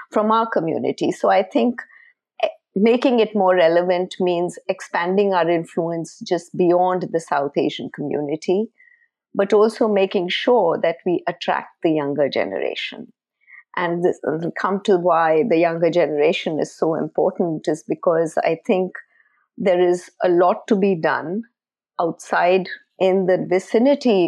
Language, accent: English, Indian